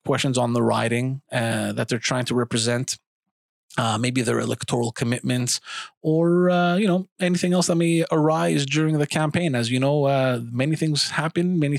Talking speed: 180 wpm